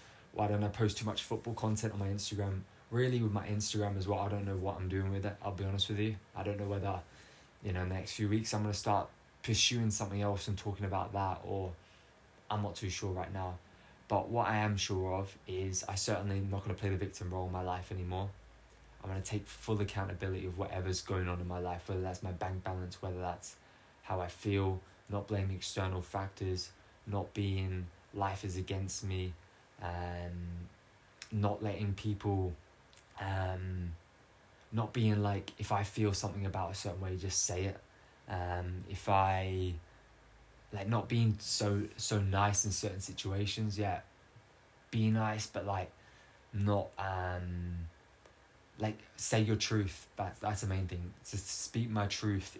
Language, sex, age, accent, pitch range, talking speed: English, male, 20-39, British, 95-105 Hz, 190 wpm